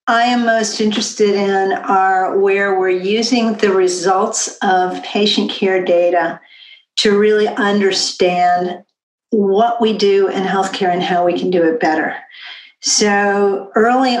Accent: American